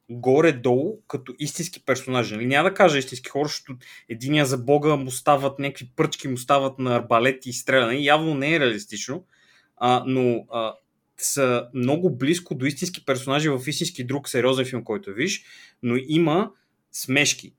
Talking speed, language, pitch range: 150 wpm, Bulgarian, 120-145 Hz